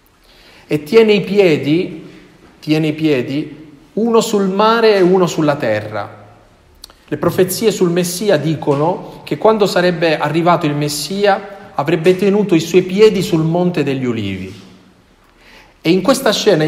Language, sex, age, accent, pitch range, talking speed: Italian, male, 40-59, native, 140-190 Hz, 135 wpm